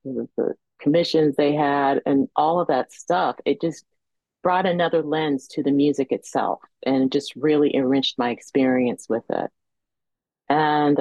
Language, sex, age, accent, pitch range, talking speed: English, female, 40-59, American, 130-150 Hz, 145 wpm